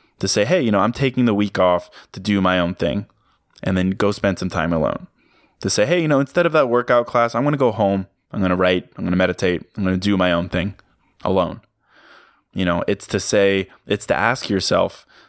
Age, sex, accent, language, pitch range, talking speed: 20-39, male, American, English, 95-120 Hz, 245 wpm